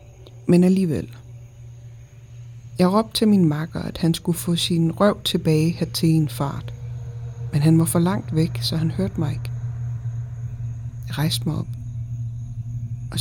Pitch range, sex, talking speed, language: 120-155 Hz, female, 155 wpm, Danish